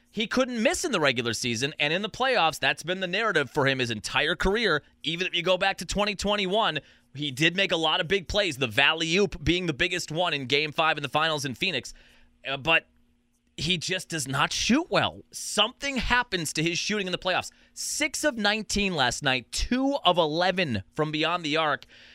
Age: 30-49